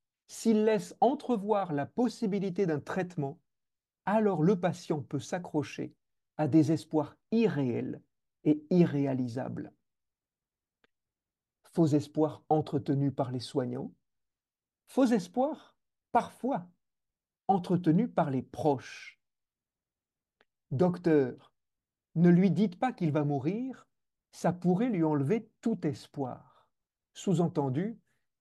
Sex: male